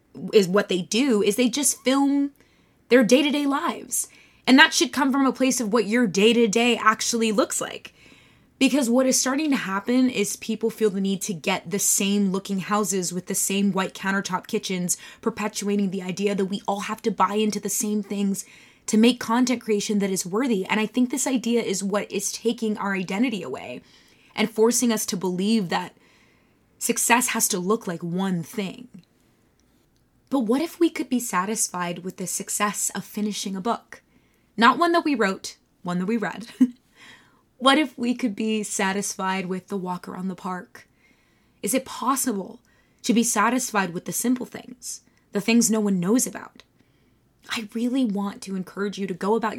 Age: 20-39